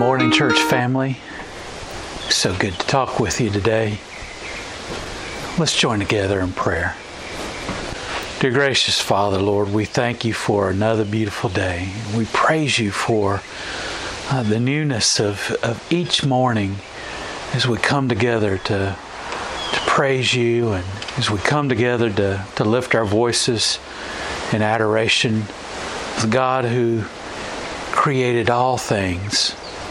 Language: English